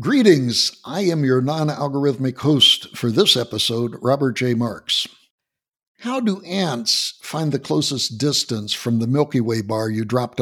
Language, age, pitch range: English, 60-79, 115-145 Hz